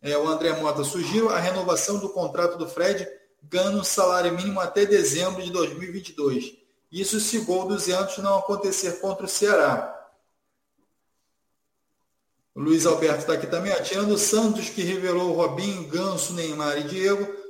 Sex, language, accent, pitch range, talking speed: male, Portuguese, Brazilian, 165-200 Hz, 150 wpm